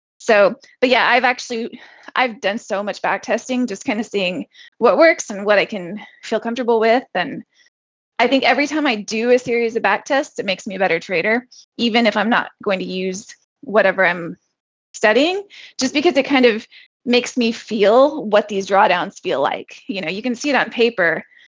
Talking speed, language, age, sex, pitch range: 205 wpm, English, 20-39, female, 200-260 Hz